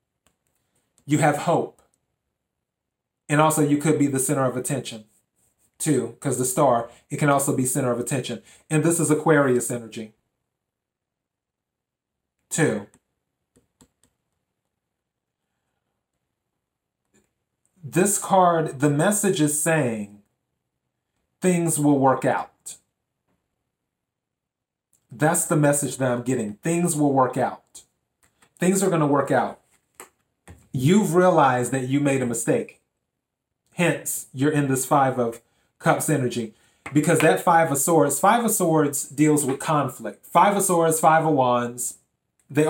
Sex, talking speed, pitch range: male, 125 wpm, 125-160 Hz